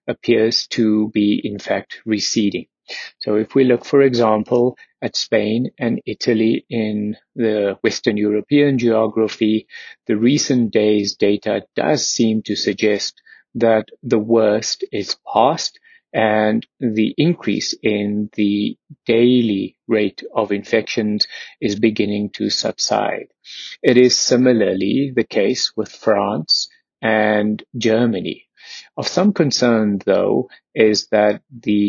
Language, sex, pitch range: English, male, 105-120 Hz